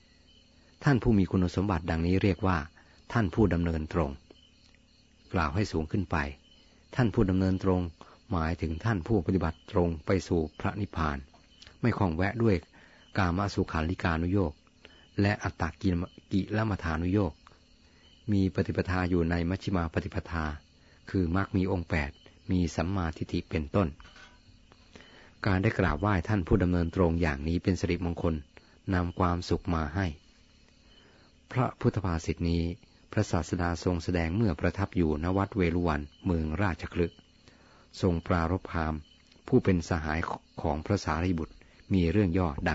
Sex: male